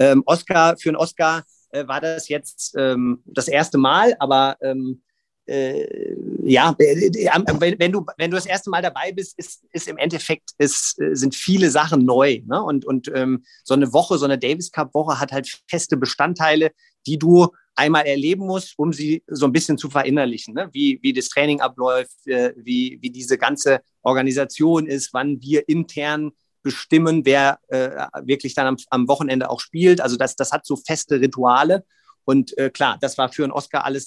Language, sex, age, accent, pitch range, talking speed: German, male, 40-59, German, 135-170 Hz, 185 wpm